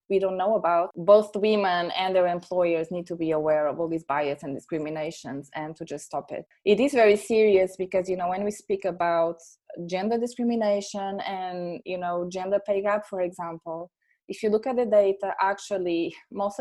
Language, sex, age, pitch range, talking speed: English, female, 20-39, 170-205 Hz, 190 wpm